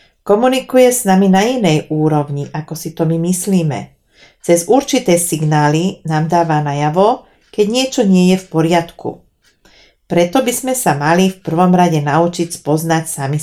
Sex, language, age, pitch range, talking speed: female, Slovak, 40-59, 155-200 Hz, 150 wpm